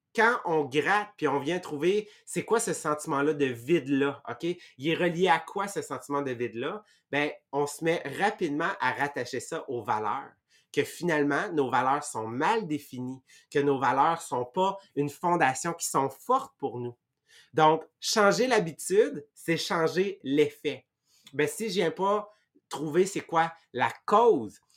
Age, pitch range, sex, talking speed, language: 30-49, 135-175 Hz, male, 170 wpm, English